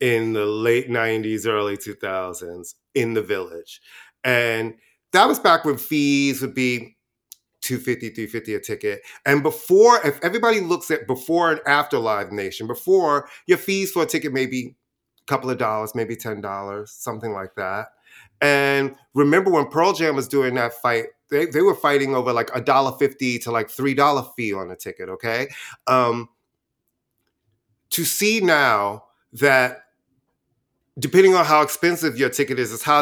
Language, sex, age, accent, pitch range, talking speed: English, male, 30-49, American, 115-155 Hz, 160 wpm